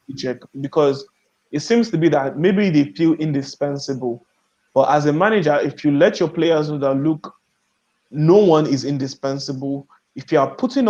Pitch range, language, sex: 140-160 Hz, English, male